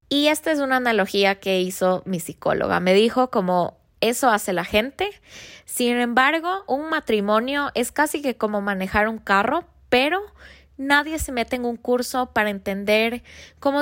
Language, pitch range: Spanish, 185-235 Hz